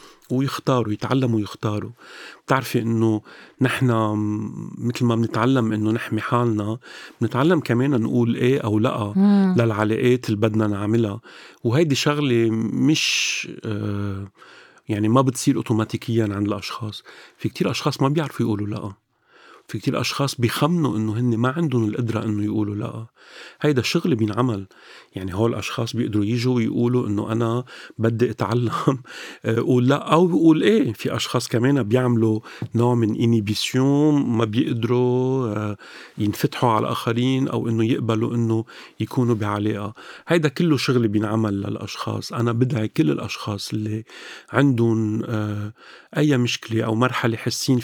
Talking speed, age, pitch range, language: 130 wpm, 40-59, 110-125 Hz, Arabic